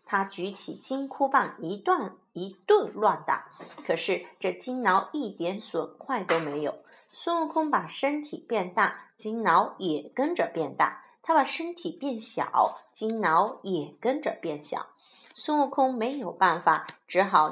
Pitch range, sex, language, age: 185-275 Hz, female, Chinese, 30-49